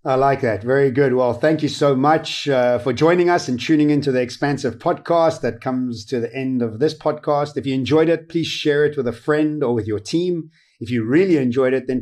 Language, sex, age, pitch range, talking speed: English, male, 30-49, 130-155 Hz, 240 wpm